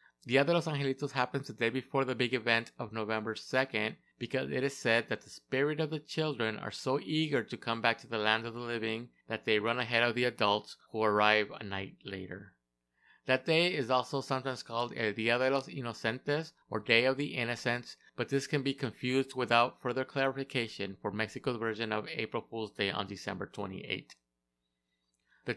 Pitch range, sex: 110-135 Hz, male